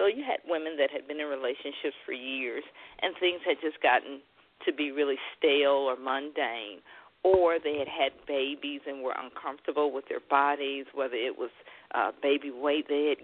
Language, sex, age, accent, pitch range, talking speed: English, female, 50-69, American, 145-205 Hz, 185 wpm